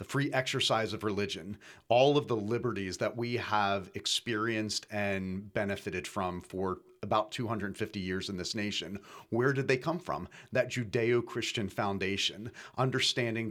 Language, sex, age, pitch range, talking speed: English, male, 40-59, 105-135 Hz, 140 wpm